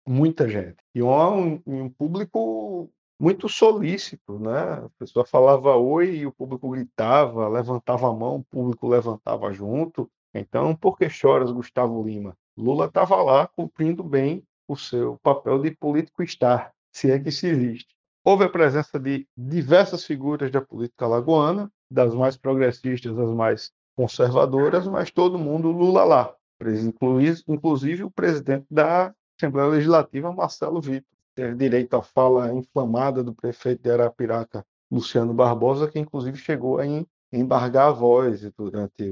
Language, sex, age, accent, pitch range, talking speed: Portuguese, male, 50-69, Brazilian, 120-155 Hz, 145 wpm